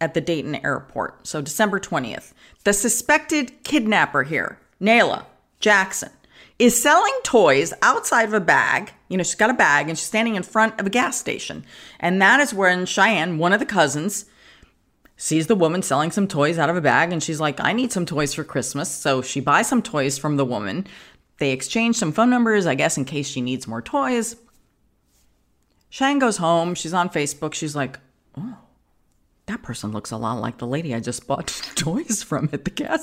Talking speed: 200 wpm